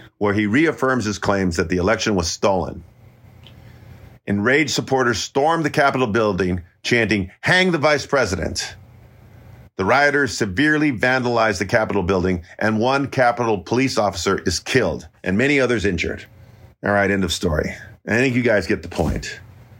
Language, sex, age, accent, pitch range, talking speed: English, male, 50-69, American, 100-130 Hz, 155 wpm